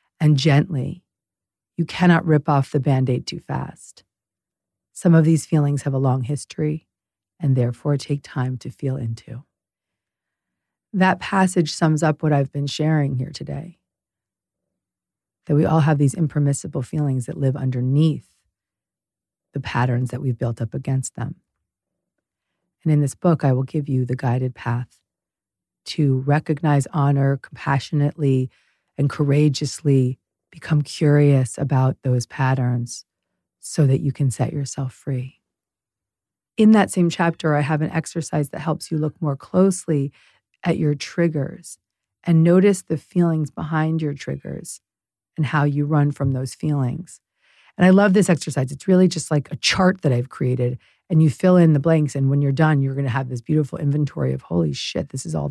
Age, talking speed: 40-59, 160 wpm